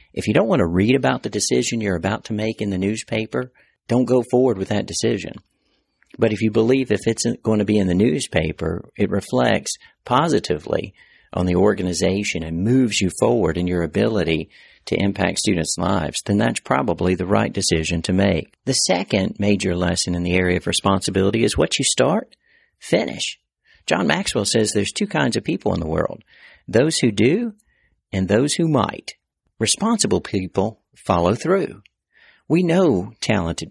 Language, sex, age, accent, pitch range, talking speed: English, male, 50-69, American, 95-145 Hz, 175 wpm